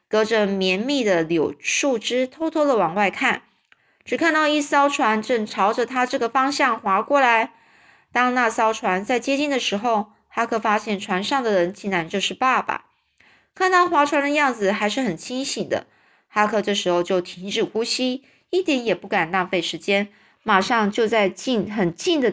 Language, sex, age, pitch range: Chinese, female, 20-39, 195-265 Hz